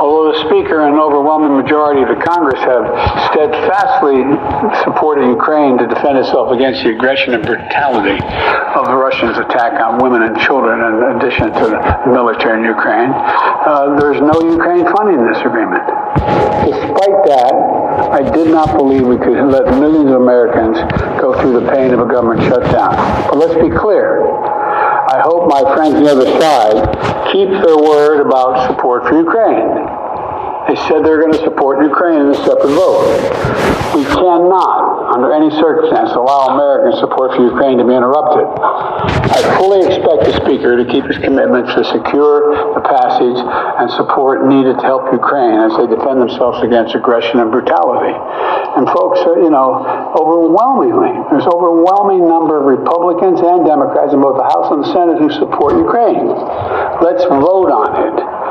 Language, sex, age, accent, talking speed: English, male, 60-79, American, 165 wpm